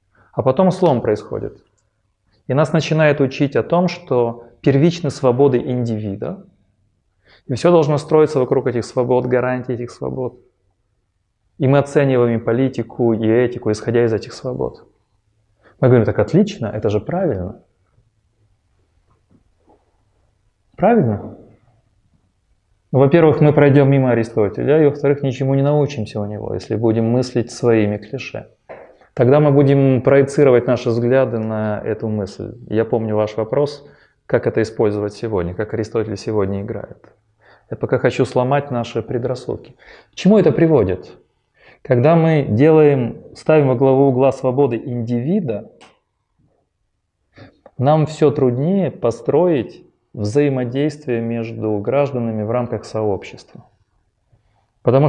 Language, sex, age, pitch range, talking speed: Russian, male, 30-49, 105-140 Hz, 120 wpm